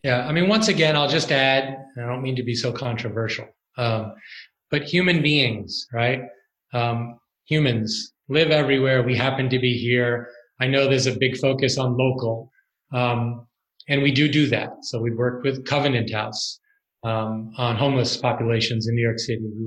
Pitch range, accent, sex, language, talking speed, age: 125-140 Hz, American, male, English, 180 wpm, 30-49